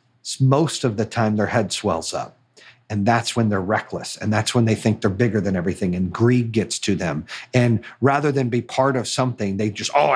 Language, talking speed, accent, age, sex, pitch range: English, 220 wpm, American, 40-59, male, 115-155 Hz